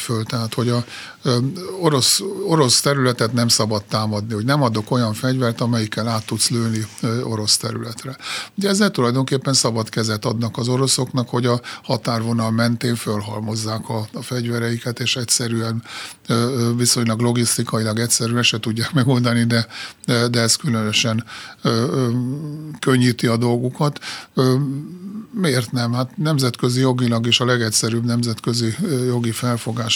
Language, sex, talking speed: Hungarian, male, 140 wpm